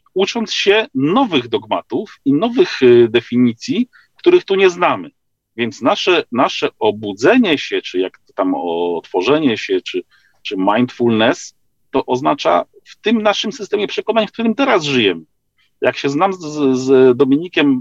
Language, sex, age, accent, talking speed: Polish, male, 40-59, native, 140 wpm